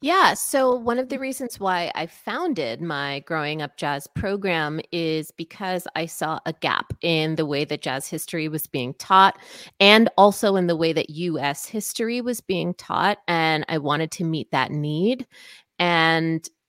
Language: English